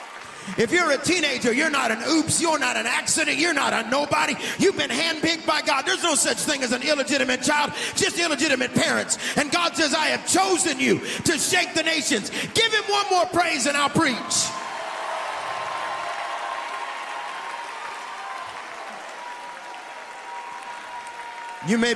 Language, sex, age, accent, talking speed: English, male, 40-59, American, 145 wpm